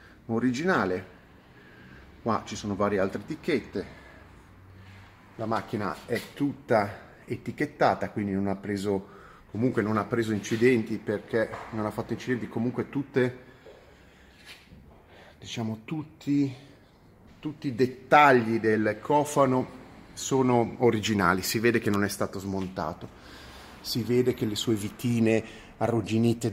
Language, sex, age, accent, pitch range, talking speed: Italian, male, 30-49, native, 100-125 Hz, 115 wpm